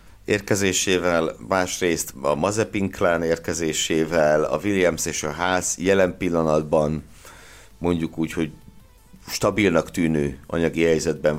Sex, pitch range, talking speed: male, 80-100 Hz, 100 wpm